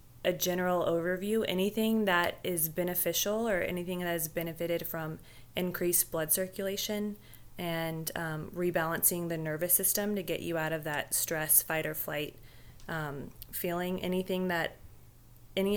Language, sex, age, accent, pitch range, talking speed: English, female, 20-39, American, 155-180 Hz, 130 wpm